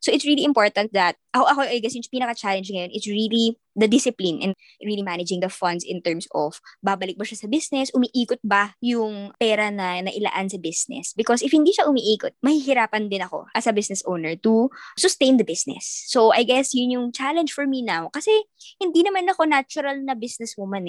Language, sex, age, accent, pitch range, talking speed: Filipino, male, 20-39, native, 195-255 Hz, 200 wpm